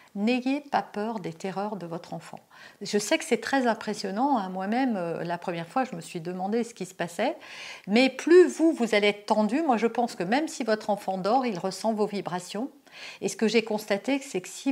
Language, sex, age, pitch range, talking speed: French, female, 50-69, 185-235 Hz, 230 wpm